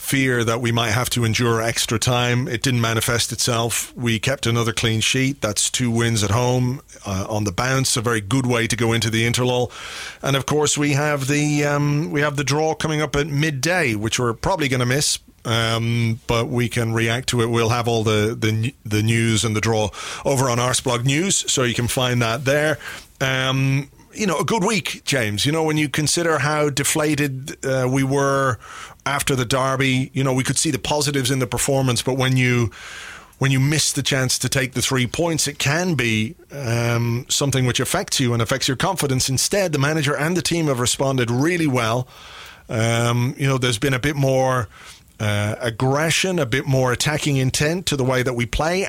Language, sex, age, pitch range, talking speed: English, male, 30-49, 115-140 Hz, 210 wpm